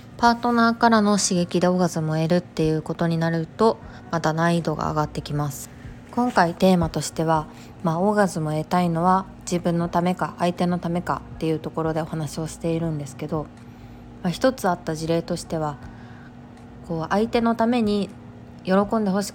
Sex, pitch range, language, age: female, 155-190 Hz, Japanese, 20-39